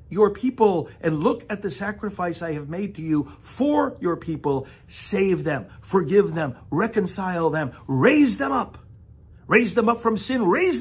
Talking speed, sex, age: 165 wpm, male, 50-69